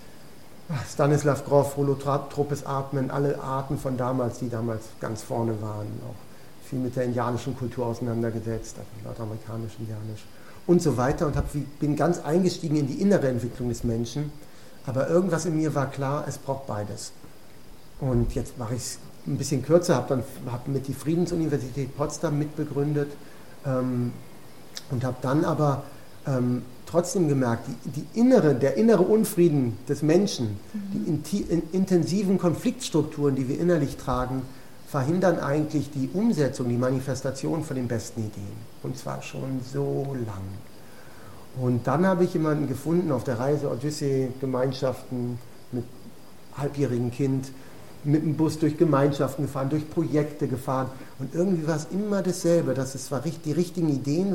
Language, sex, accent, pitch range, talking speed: German, male, German, 125-155 Hz, 150 wpm